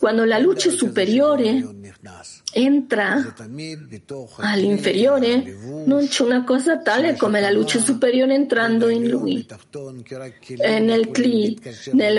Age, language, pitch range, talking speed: 50-69, Italian, 200-250 Hz, 110 wpm